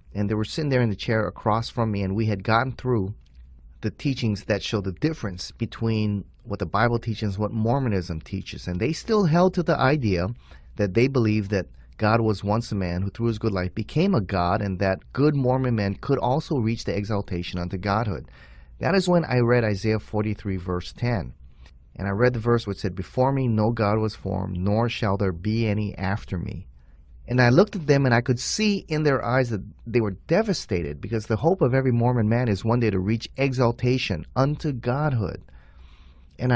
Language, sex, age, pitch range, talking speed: English, male, 30-49, 95-120 Hz, 210 wpm